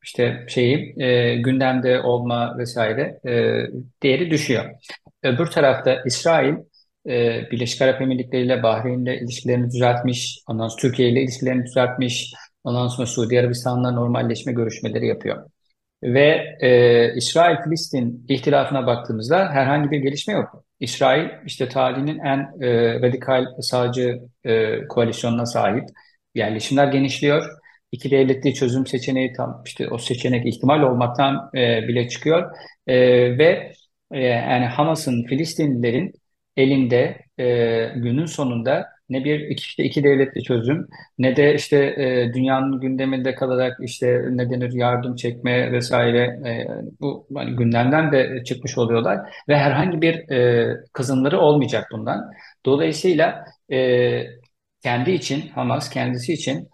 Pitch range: 120-135 Hz